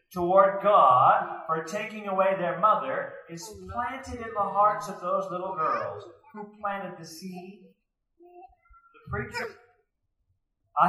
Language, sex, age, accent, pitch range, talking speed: English, male, 40-59, American, 185-230 Hz, 125 wpm